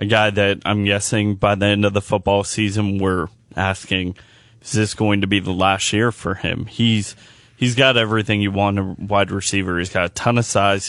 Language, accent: English, American